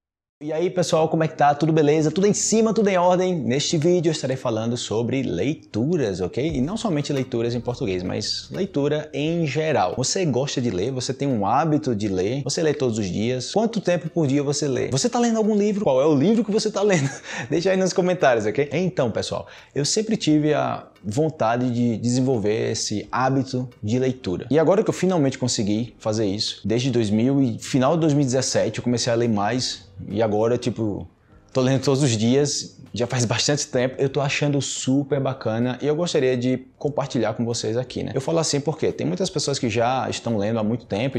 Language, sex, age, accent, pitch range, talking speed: Portuguese, male, 20-39, Brazilian, 115-155 Hz, 210 wpm